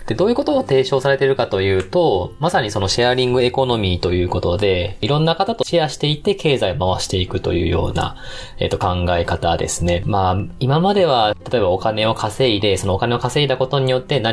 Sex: male